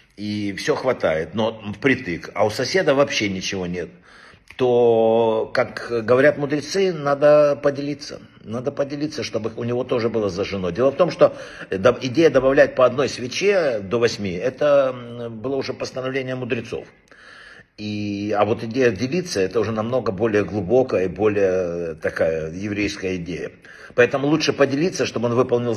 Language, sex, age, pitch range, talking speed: Russian, male, 60-79, 105-135 Hz, 145 wpm